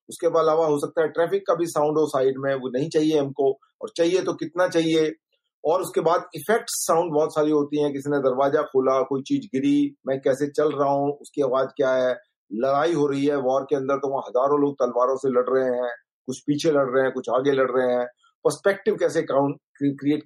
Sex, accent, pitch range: male, native, 140-190 Hz